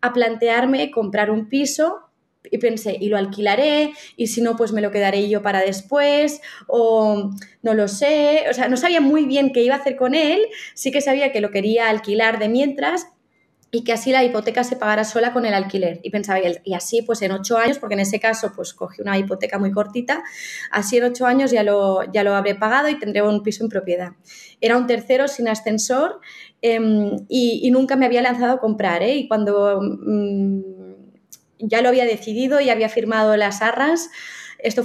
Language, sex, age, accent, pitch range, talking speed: Spanish, female, 20-39, Spanish, 205-255 Hz, 200 wpm